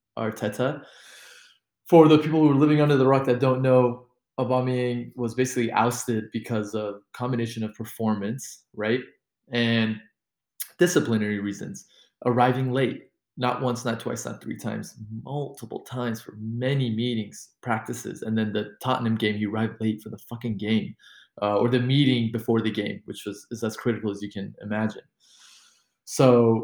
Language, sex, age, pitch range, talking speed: English, male, 20-39, 105-125 Hz, 160 wpm